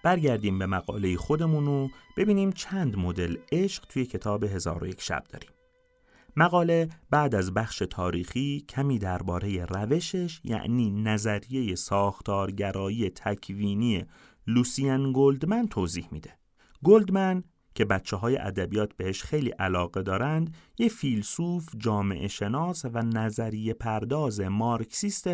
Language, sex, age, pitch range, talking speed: Persian, male, 30-49, 105-160 Hz, 105 wpm